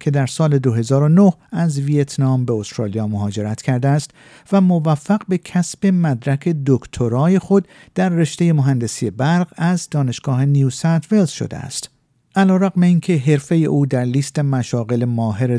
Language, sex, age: Persian, male, 50-69